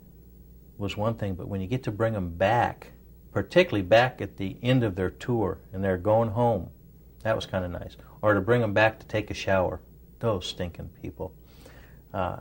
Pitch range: 95-120 Hz